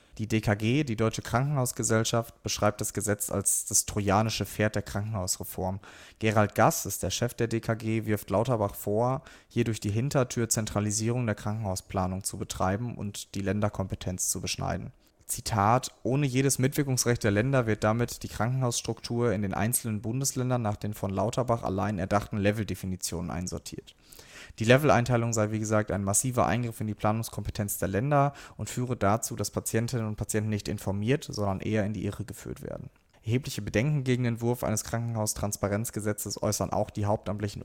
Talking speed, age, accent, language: 160 wpm, 30-49, German, German